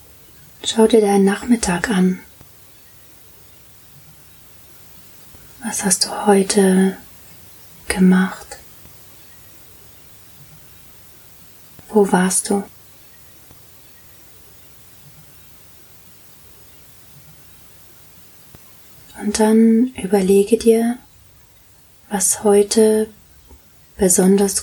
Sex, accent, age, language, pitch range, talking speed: female, German, 30-49, German, 140-210 Hz, 50 wpm